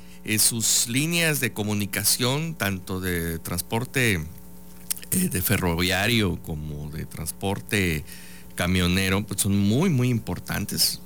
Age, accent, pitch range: 50-69, Mexican, 85-110 Hz